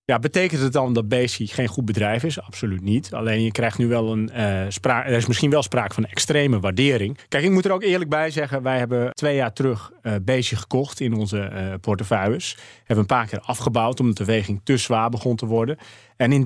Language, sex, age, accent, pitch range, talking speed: Dutch, male, 30-49, Dutch, 105-135 Hz, 230 wpm